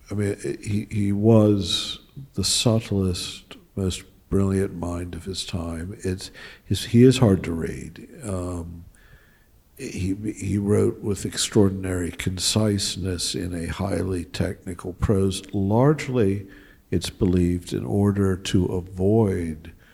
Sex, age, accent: male, 60-79, American